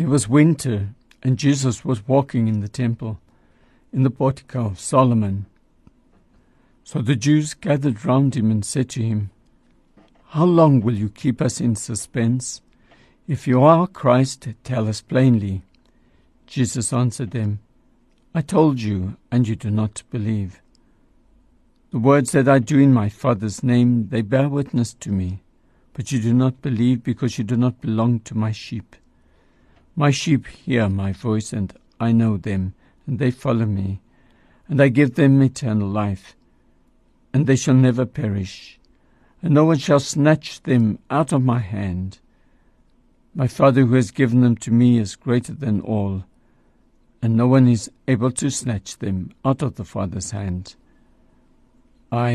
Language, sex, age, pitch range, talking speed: English, male, 60-79, 105-135 Hz, 160 wpm